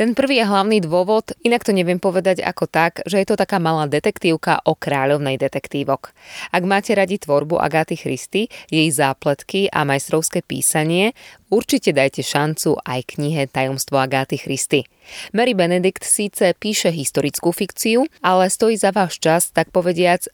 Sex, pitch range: female, 140-200 Hz